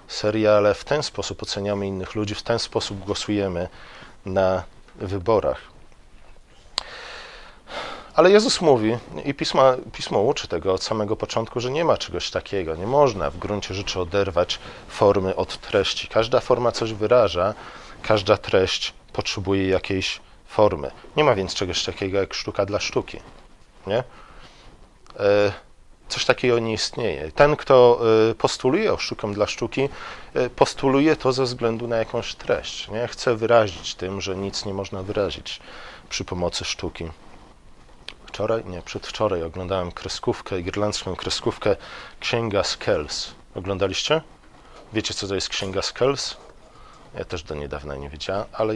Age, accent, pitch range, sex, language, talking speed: 40-59, native, 95-115 Hz, male, Polish, 135 wpm